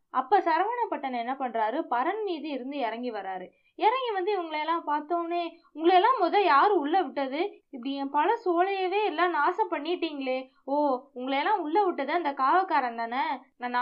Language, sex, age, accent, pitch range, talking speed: Tamil, female, 20-39, native, 250-360 Hz, 150 wpm